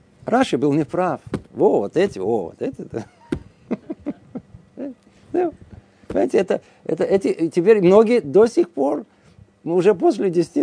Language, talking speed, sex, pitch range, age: Russian, 105 wpm, male, 140-215 Hz, 50-69